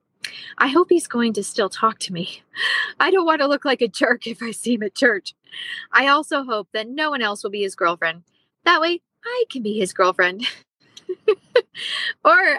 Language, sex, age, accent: English, female, 20-39, American